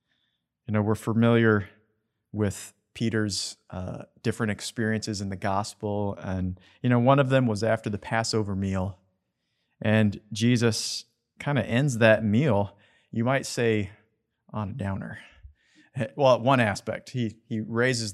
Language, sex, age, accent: English, male, 30-49, American